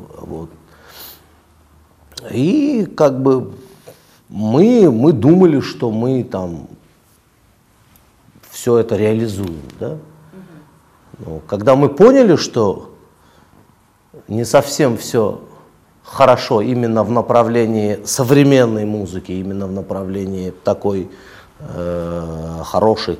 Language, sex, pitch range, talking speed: Russian, male, 90-135 Hz, 90 wpm